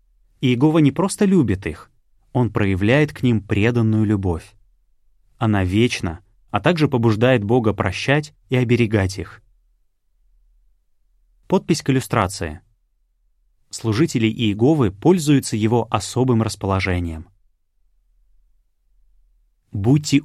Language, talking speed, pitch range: Russian, 90 wpm, 95-125 Hz